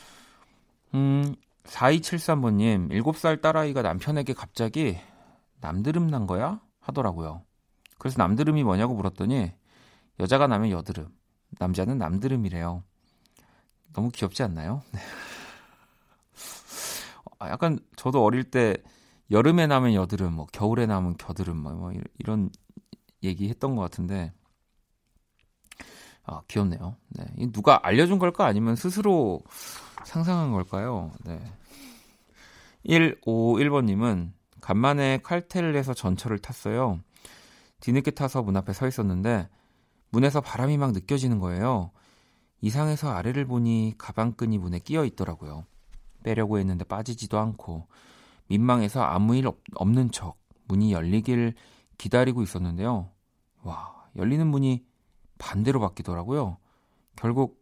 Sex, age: male, 40-59